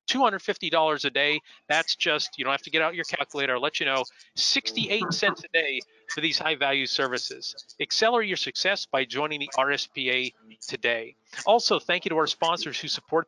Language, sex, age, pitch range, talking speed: English, male, 40-59, 140-190 Hz, 200 wpm